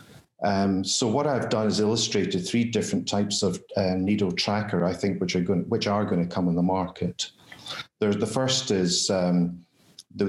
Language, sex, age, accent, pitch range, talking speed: English, male, 50-69, British, 90-105 Hz, 175 wpm